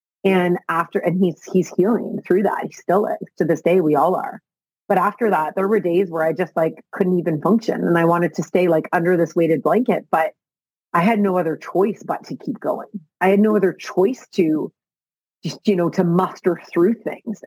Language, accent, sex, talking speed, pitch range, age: English, American, female, 215 wpm, 175-205 Hz, 30-49